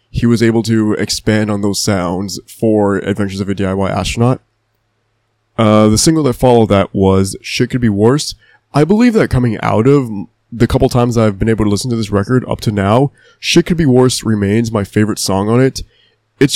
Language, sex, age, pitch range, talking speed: English, male, 20-39, 105-120 Hz, 205 wpm